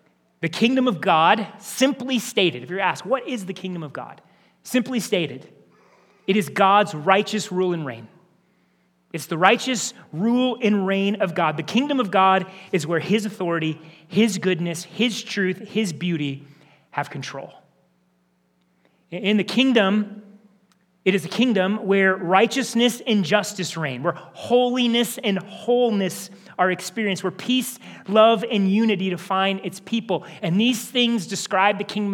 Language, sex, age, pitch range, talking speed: English, male, 30-49, 165-205 Hz, 150 wpm